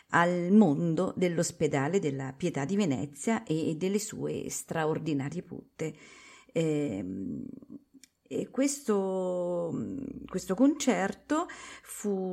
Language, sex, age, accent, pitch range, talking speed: Italian, female, 40-59, native, 155-250 Hz, 80 wpm